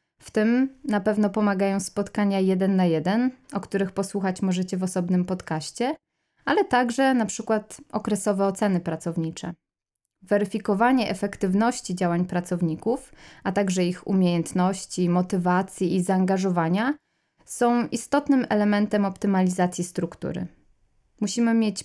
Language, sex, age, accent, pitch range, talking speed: Polish, female, 20-39, native, 180-225 Hz, 115 wpm